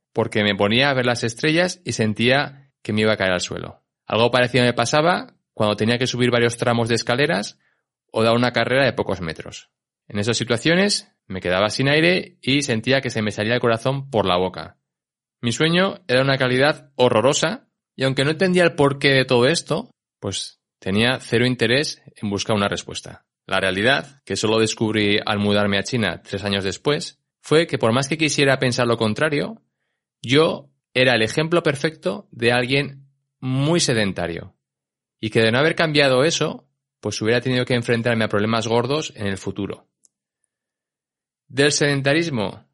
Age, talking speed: 20-39, 175 wpm